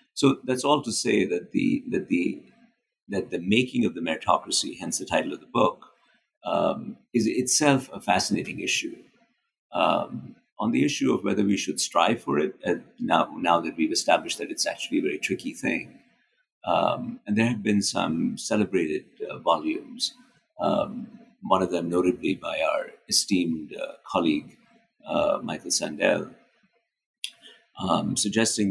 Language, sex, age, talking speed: English, male, 50-69, 155 wpm